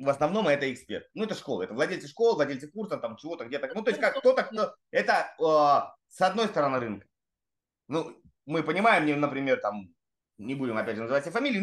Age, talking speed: 20-39, 200 wpm